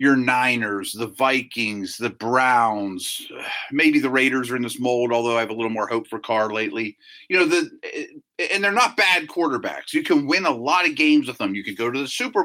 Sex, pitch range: male, 120-175 Hz